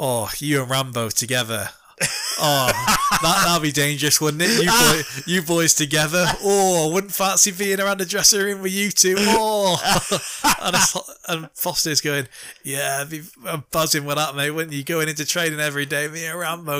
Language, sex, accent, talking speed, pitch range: English, male, British, 180 wpm, 120-155 Hz